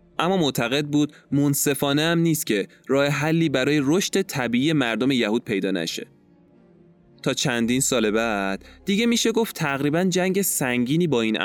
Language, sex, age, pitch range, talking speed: Persian, male, 20-39, 105-150 Hz, 145 wpm